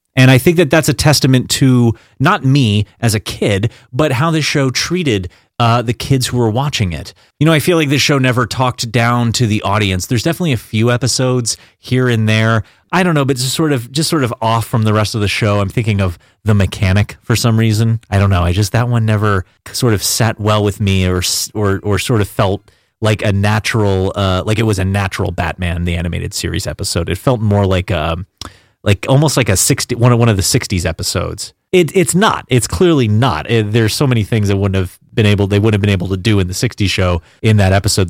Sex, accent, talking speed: male, American, 235 wpm